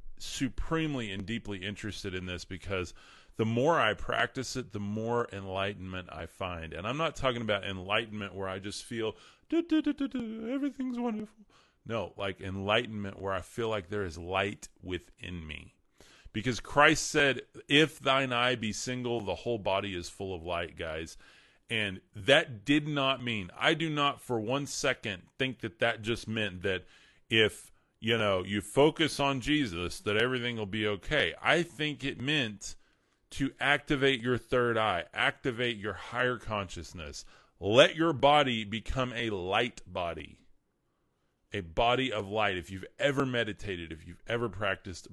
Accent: American